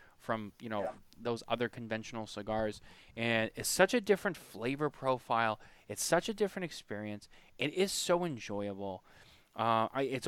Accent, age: American, 20-39